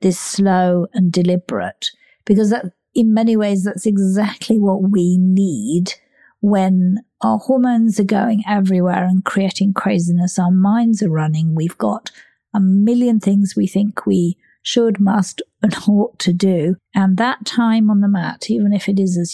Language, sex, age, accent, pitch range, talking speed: English, female, 50-69, British, 190-225 Hz, 160 wpm